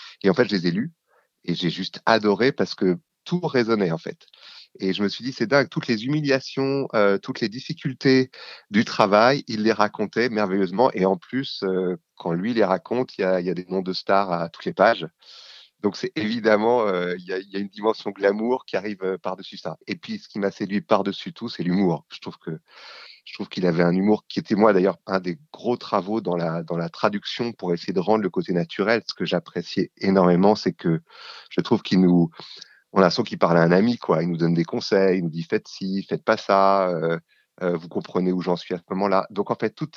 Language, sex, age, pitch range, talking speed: French, male, 30-49, 90-115 Hz, 240 wpm